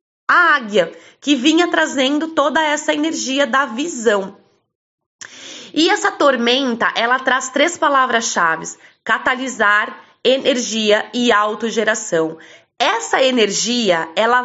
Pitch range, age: 235-300 Hz, 20-39